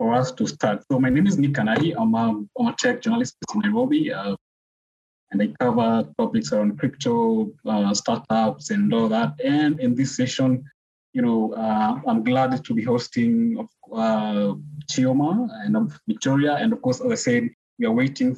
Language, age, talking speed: English, 20-39, 175 wpm